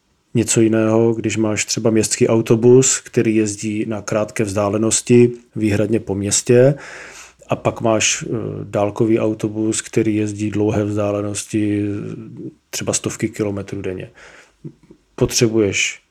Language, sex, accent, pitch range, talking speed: Czech, male, native, 105-115 Hz, 110 wpm